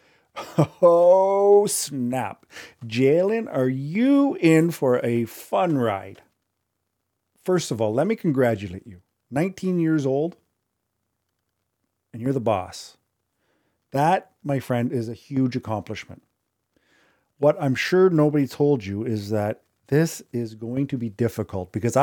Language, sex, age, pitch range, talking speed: English, male, 40-59, 110-150 Hz, 125 wpm